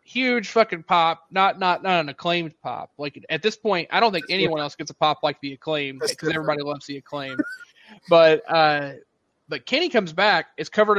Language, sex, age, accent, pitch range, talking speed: English, male, 30-49, American, 150-195 Hz, 200 wpm